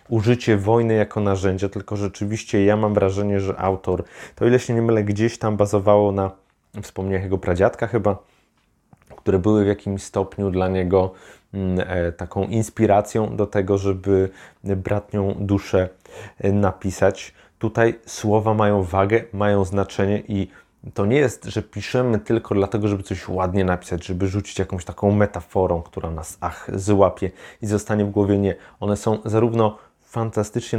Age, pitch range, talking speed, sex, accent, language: 30-49, 95-110 Hz, 145 wpm, male, native, Polish